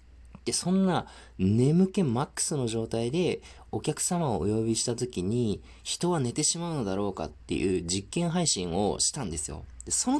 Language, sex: Japanese, male